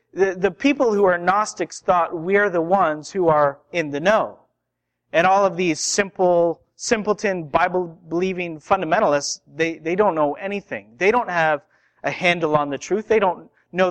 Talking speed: 170 wpm